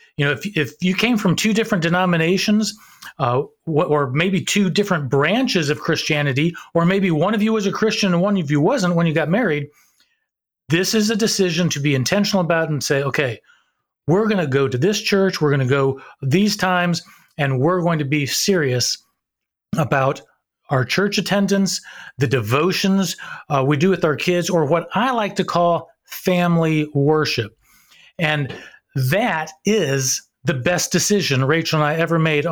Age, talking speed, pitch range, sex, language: 40-59, 175 wpm, 150-195 Hz, male, English